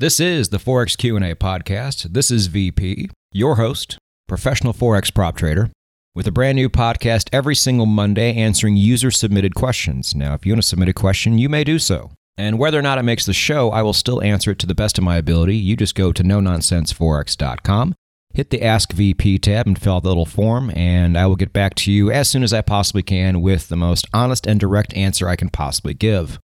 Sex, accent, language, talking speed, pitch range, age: male, American, English, 220 wpm, 85-115 Hz, 30-49